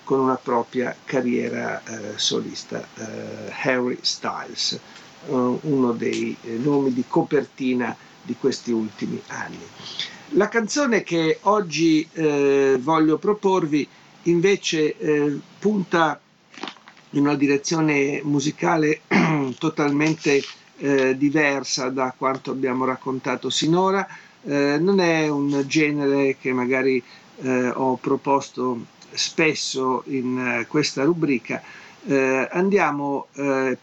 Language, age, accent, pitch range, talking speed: Italian, 50-69, native, 130-155 Hz, 105 wpm